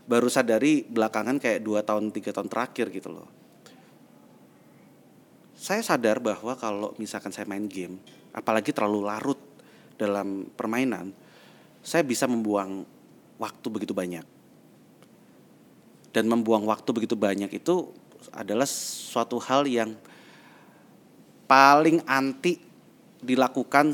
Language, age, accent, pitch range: Indonesian, 30-49, native, 105-140 Hz